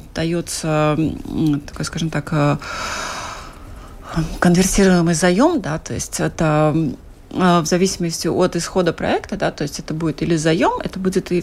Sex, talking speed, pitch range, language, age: female, 125 wpm, 160-200 Hz, Russian, 30-49